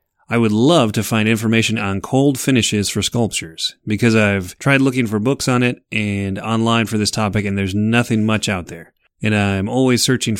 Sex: male